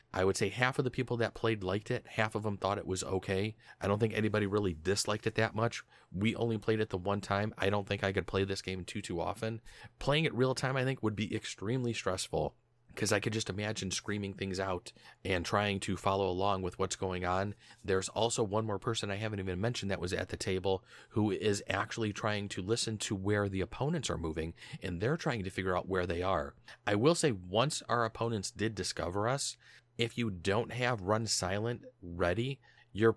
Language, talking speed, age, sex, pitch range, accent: English, 225 wpm, 30-49, male, 95-115 Hz, American